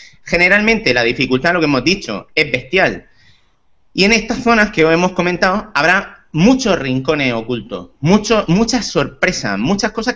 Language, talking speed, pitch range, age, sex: Spanish, 155 wpm, 130-195 Hz, 30-49, male